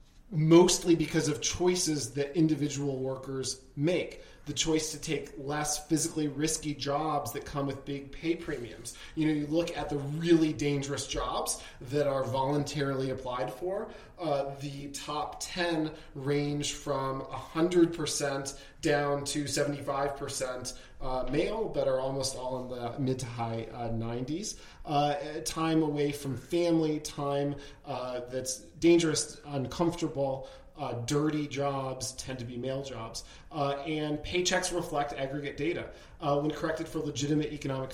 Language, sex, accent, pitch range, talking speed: English, male, American, 130-155 Hz, 140 wpm